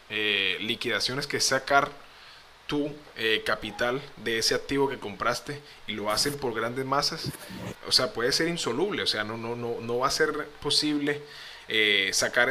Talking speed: 170 wpm